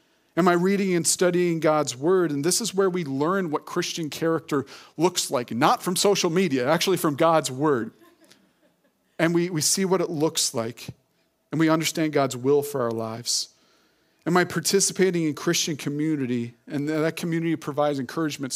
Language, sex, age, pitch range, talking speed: English, male, 40-59, 135-165 Hz, 170 wpm